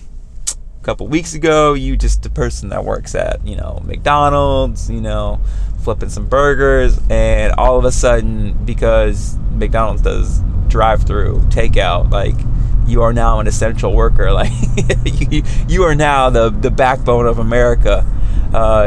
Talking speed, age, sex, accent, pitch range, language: 150 wpm, 20-39, male, American, 100-120 Hz, English